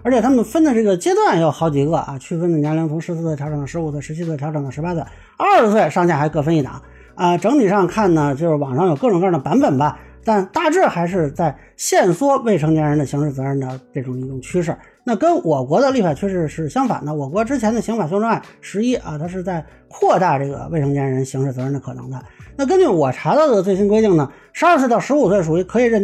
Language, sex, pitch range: Chinese, male, 150-215 Hz